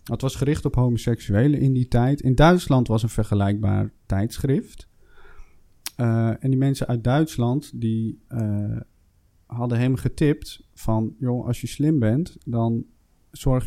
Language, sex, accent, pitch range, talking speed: Dutch, male, Dutch, 105-130 Hz, 145 wpm